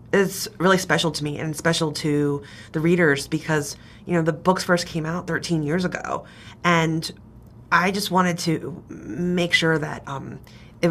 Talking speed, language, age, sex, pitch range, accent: 170 wpm, English, 30-49, female, 140-170 Hz, American